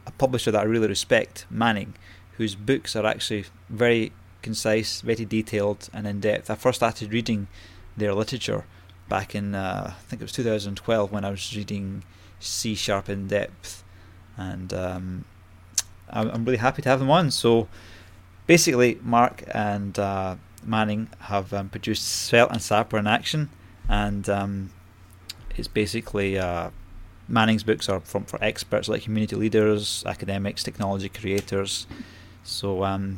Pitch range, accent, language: 95-110 Hz, British, English